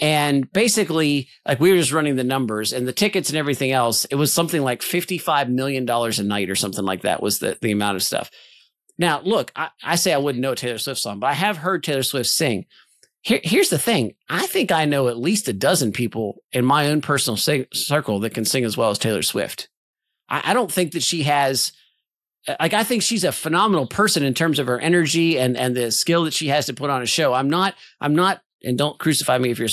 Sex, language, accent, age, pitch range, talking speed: male, English, American, 40-59, 125-165 Hz, 235 wpm